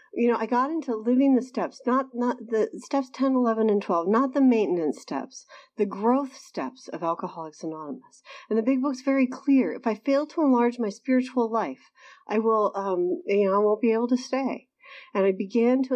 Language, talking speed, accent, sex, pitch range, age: English, 205 wpm, American, female, 210-275 Hz, 50-69